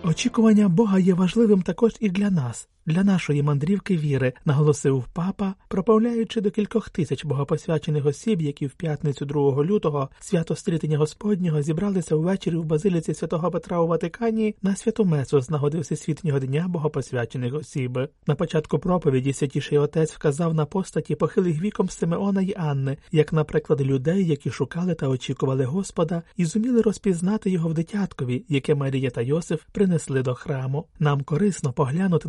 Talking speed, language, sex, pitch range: 150 wpm, Ukrainian, male, 145-190 Hz